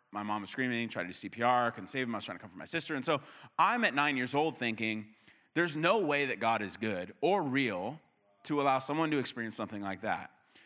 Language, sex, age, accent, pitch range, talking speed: English, male, 30-49, American, 115-145 Hz, 240 wpm